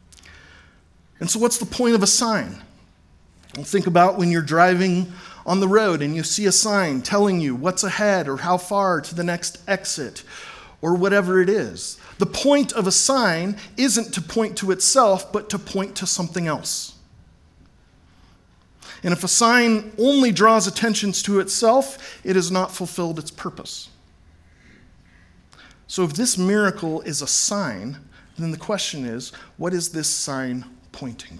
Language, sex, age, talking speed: English, male, 40-59, 160 wpm